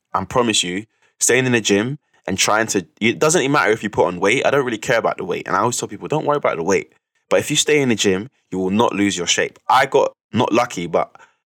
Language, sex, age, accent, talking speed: English, male, 20-39, British, 285 wpm